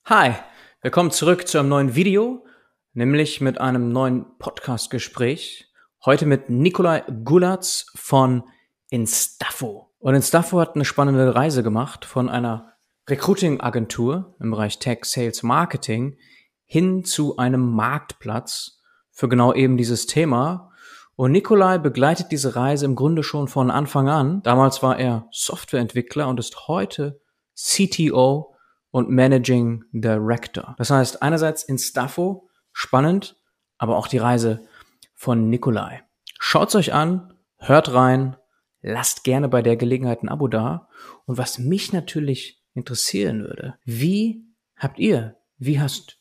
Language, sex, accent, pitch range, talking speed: German, male, German, 125-155 Hz, 130 wpm